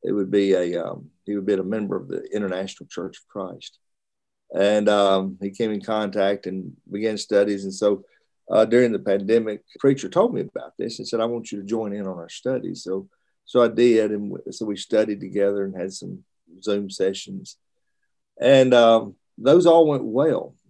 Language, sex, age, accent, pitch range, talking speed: English, male, 50-69, American, 100-120 Hz, 195 wpm